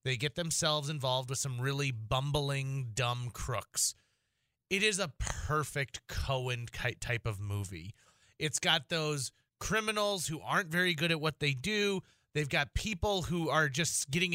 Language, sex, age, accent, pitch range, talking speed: English, male, 30-49, American, 125-160 Hz, 155 wpm